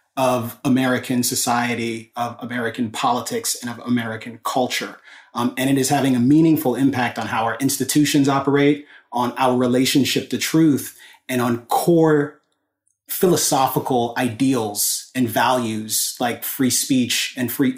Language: English